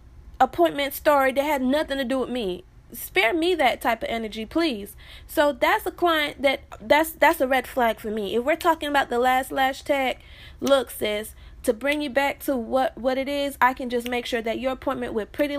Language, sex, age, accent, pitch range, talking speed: English, female, 20-39, American, 225-280 Hz, 220 wpm